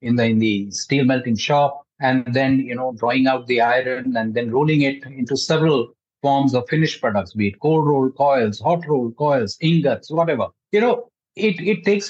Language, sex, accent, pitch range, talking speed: English, male, Indian, 120-160 Hz, 195 wpm